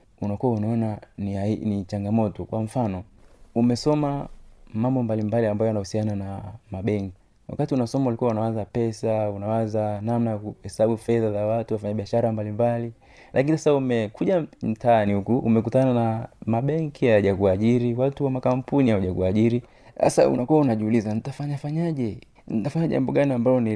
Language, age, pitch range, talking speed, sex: Swahili, 30-49, 105-120 Hz, 135 wpm, male